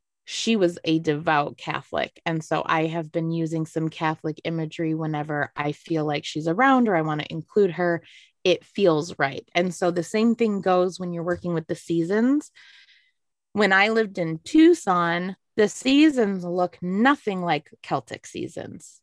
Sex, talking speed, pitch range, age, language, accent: female, 165 wpm, 160-200 Hz, 20-39, English, American